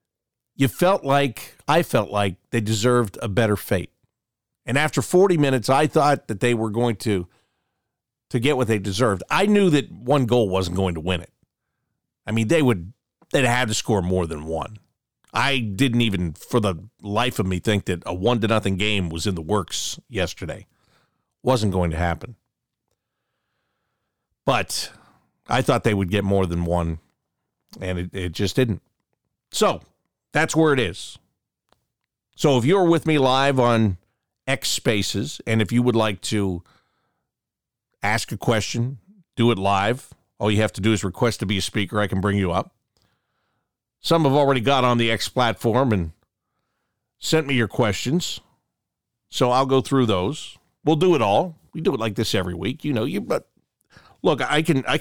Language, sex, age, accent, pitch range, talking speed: English, male, 50-69, American, 100-130 Hz, 180 wpm